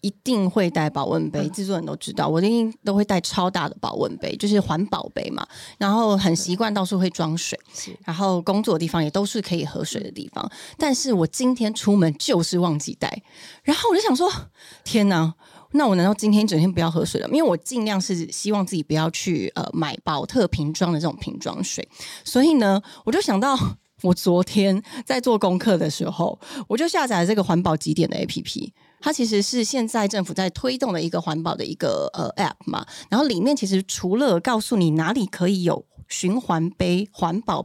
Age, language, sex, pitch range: 30-49, Chinese, female, 175-220 Hz